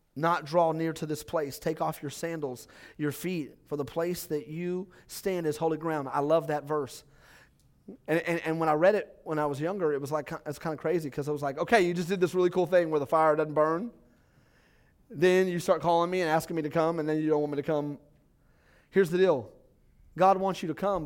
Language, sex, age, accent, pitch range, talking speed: English, male, 30-49, American, 140-170 Hz, 245 wpm